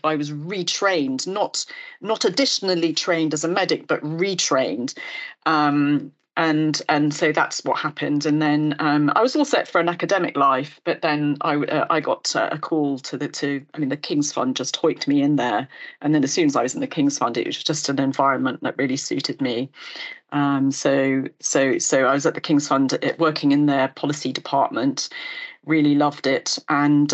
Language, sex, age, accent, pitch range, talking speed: English, female, 40-59, British, 145-190 Hz, 200 wpm